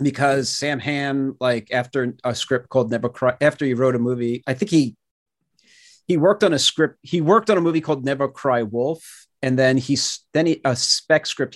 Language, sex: English, male